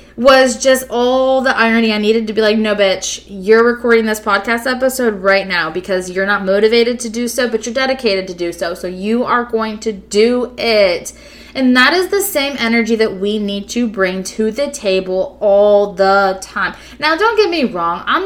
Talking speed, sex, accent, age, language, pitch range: 205 wpm, female, American, 20-39, English, 195-245 Hz